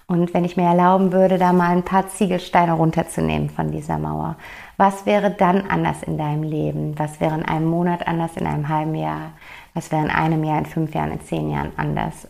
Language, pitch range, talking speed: German, 170-200 Hz, 215 wpm